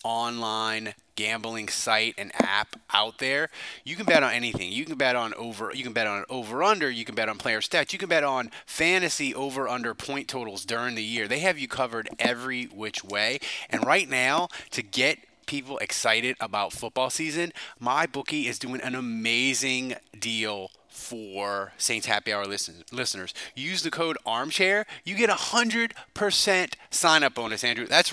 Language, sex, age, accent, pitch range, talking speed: English, male, 30-49, American, 115-170 Hz, 175 wpm